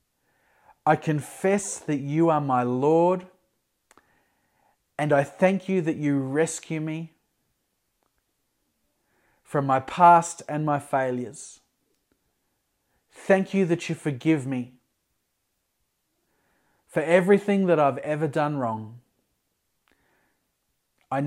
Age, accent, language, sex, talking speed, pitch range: 30-49, Australian, English, male, 100 wpm, 130-165 Hz